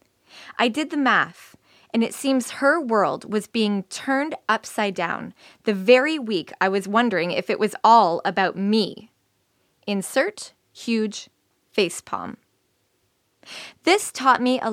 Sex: female